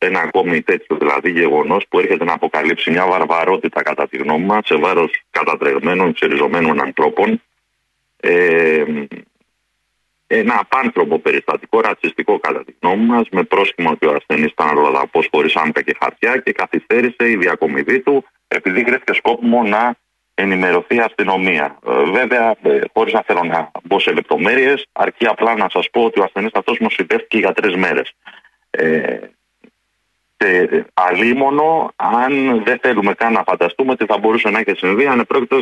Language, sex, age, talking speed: Greek, male, 40-59, 145 wpm